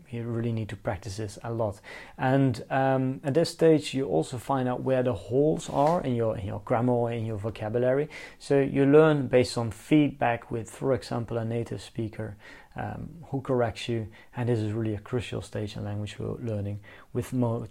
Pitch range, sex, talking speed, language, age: 110-140 Hz, male, 195 wpm, English, 30-49